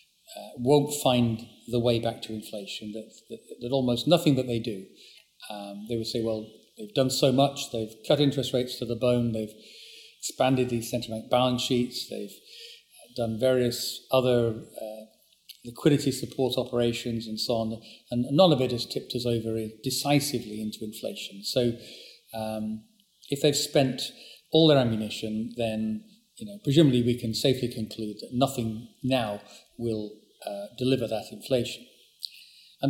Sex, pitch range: male, 115-140 Hz